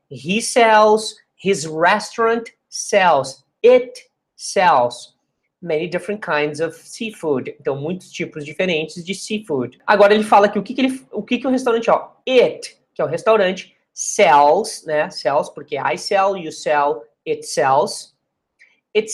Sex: male